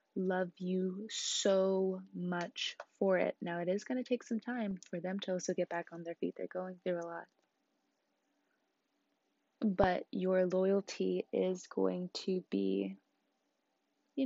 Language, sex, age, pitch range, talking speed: English, female, 20-39, 185-270 Hz, 150 wpm